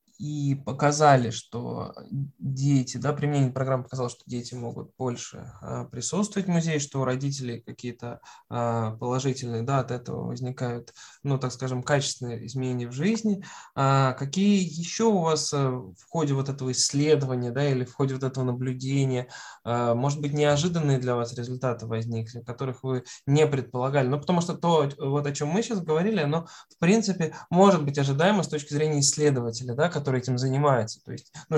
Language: Russian